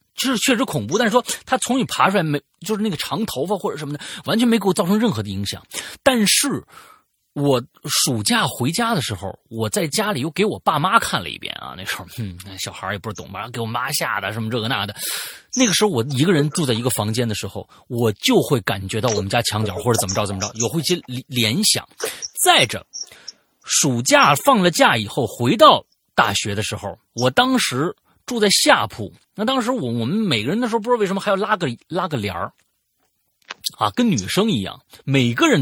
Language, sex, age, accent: Chinese, male, 30-49, native